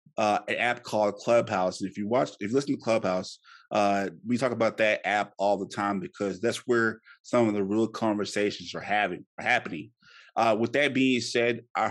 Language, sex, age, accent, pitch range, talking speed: English, male, 20-39, American, 100-120 Hz, 205 wpm